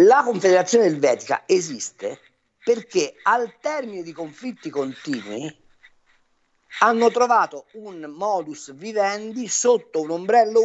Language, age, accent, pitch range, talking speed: Italian, 50-69, native, 160-250 Hz, 100 wpm